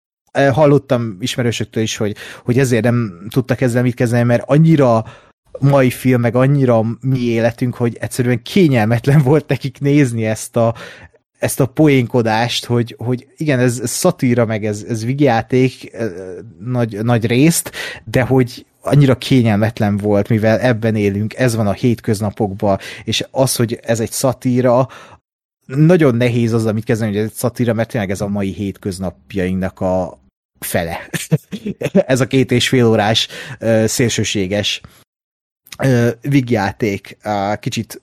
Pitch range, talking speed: 105-130 Hz, 135 wpm